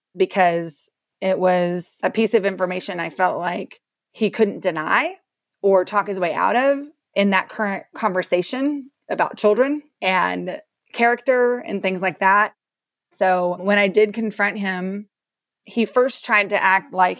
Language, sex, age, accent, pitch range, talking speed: English, female, 30-49, American, 185-225 Hz, 150 wpm